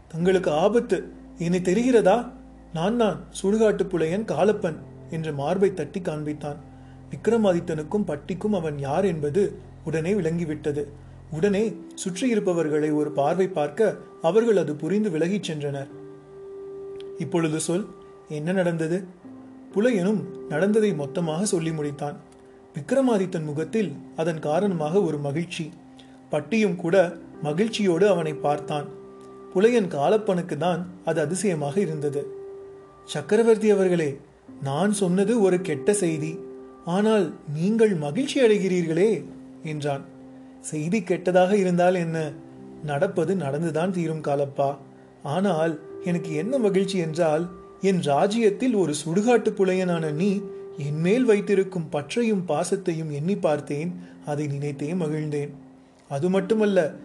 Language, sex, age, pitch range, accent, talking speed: Tamil, male, 30-49, 150-200 Hz, native, 100 wpm